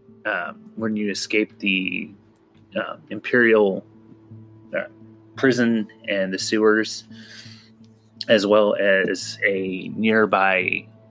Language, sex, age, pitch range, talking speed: English, male, 20-39, 95-110 Hz, 90 wpm